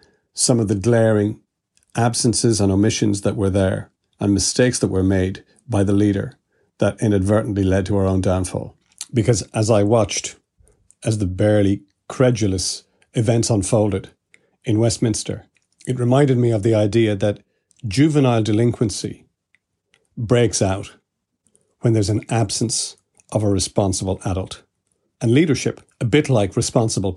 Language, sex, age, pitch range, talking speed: English, male, 50-69, 100-125 Hz, 135 wpm